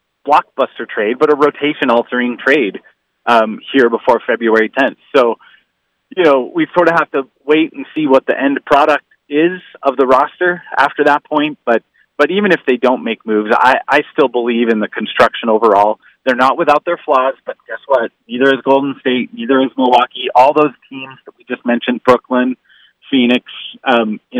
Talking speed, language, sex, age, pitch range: 185 wpm, English, male, 30-49, 120-150 Hz